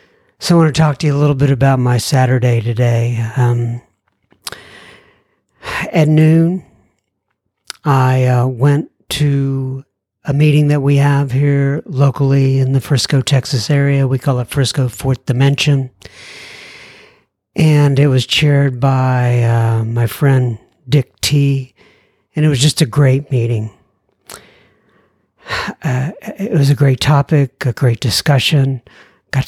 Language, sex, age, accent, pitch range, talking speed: English, male, 60-79, American, 125-150 Hz, 135 wpm